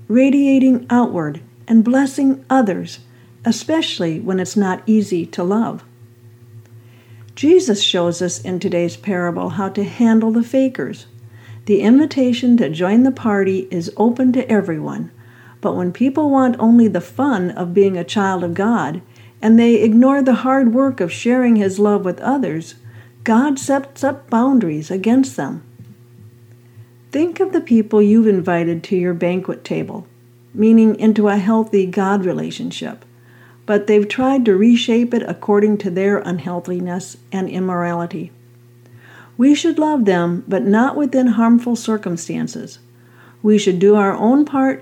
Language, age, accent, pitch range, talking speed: English, 50-69, American, 160-235 Hz, 145 wpm